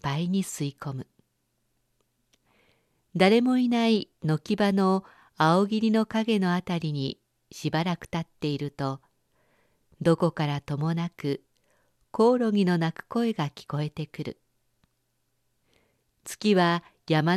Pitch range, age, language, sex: 150-210 Hz, 50-69, Japanese, female